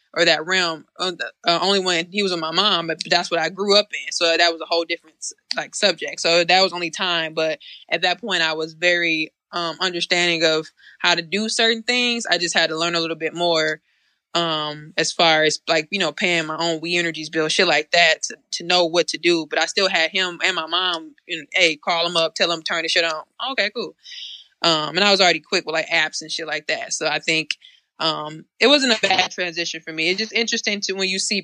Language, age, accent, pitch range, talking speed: English, 20-39, American, 160-190 Hz, 240 wpm